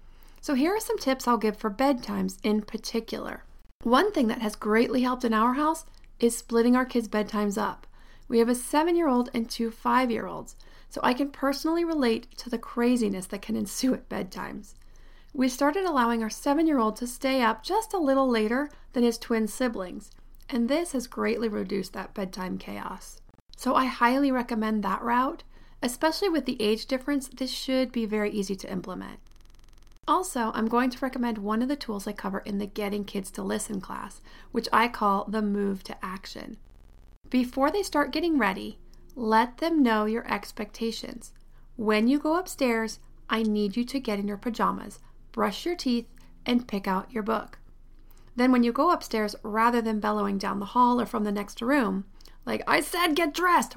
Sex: female